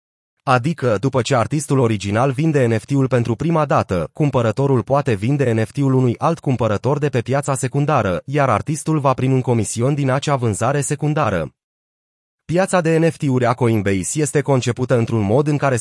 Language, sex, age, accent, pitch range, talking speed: Romanian, male, 30-49, native, 115-145 Hz, 160 wpm